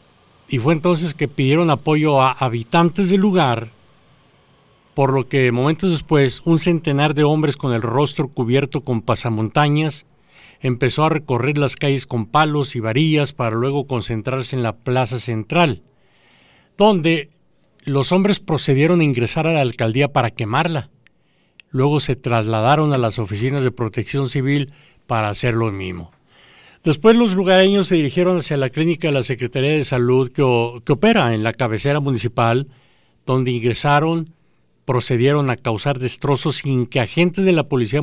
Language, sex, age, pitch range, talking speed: English, male, 50-69, 125-155 Hz, 155 wpm